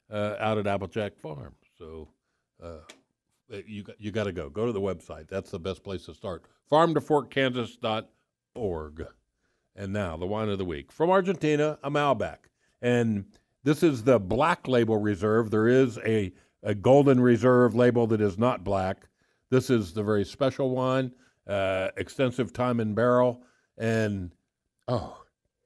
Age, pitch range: 60-79, 105-130 Hz